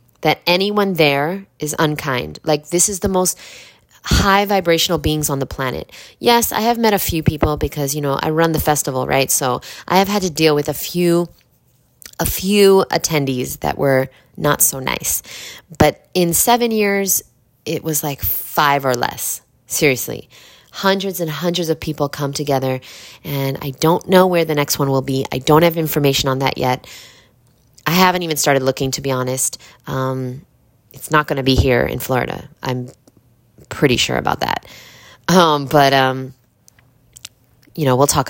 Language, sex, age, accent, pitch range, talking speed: English, female, 20-39, American, 130-170 Hz, 175 wpm